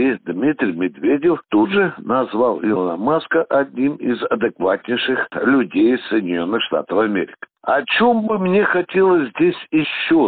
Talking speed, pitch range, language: 130 wpm, 145-245 Hz, Russian